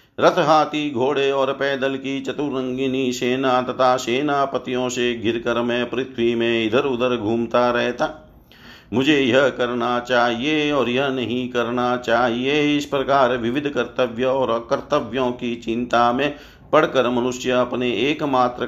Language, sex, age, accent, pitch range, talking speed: Hindi, male, 50-69, native, 120-140 Hz, 130 wpm